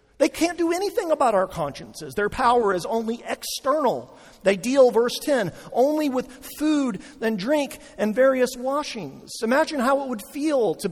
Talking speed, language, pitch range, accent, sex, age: 165 wpm, English, 180-280 Hz, American, male, 40-59